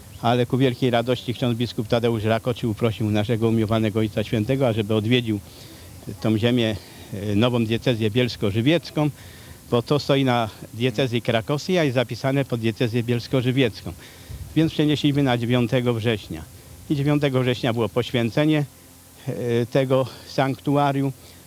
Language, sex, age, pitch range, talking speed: Polish, male, 50-69, 110-135 Hz, 120 wpm